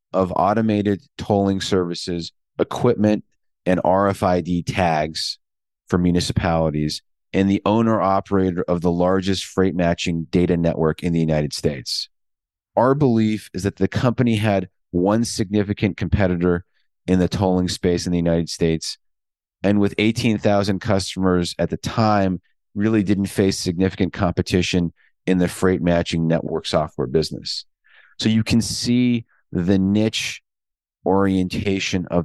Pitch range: 90-105 Hz